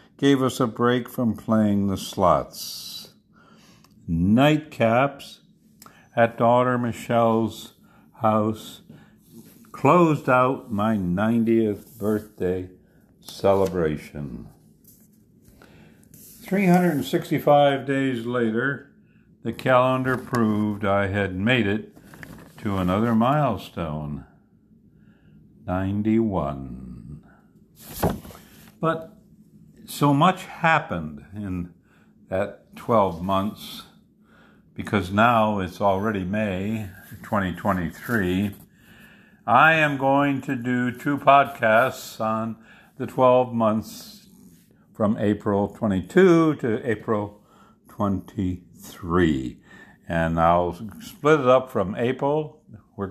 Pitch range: 100-145 Hz